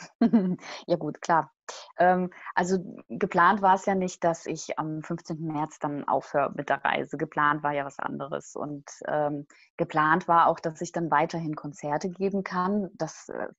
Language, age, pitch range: German, 20-39, 155-200 Hz